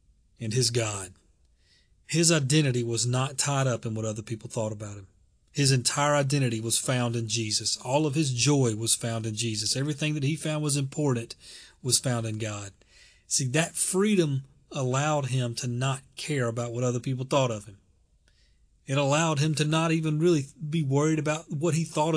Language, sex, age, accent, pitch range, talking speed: English, male, 40-59, American, 115-155 Hz, 185 wpm